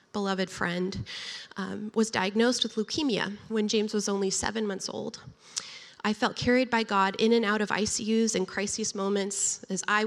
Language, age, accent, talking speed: English, 20-39, American, 175 wpm